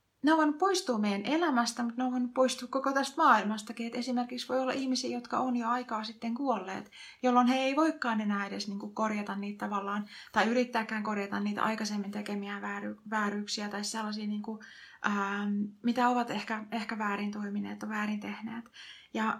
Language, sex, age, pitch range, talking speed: Finnish, female, 30-49, 205-245 Hz, 150 wpm